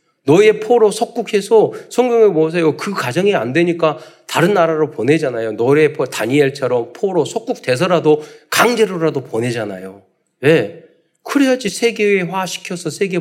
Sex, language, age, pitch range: male, Korean, 40-59, 145-200 Hz